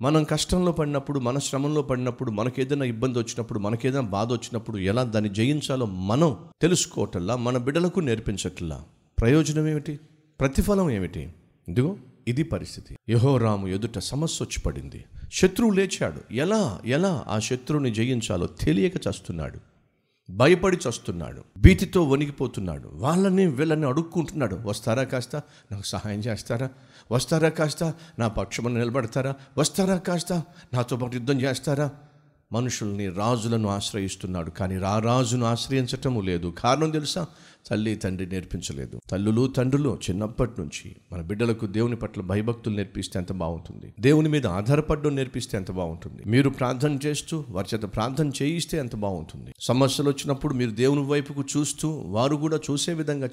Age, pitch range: 50-69, 105-145 Hz